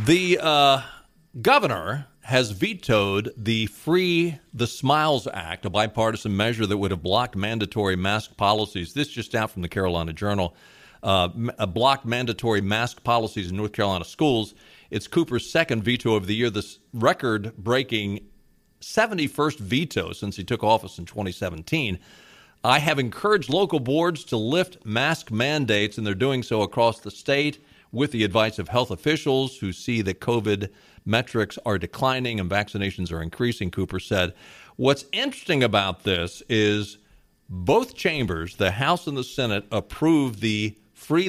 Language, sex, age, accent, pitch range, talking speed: English, male, 50-69, American, 100-135 Hz, 150 wpm